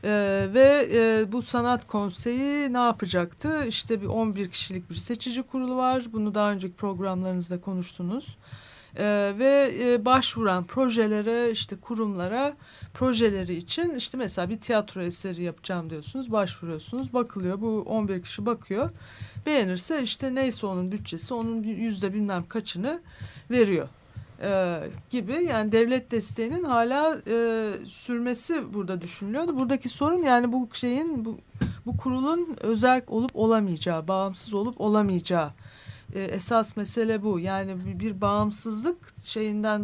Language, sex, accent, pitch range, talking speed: Turkish, female, native, 185-240 Hz, 130 wpm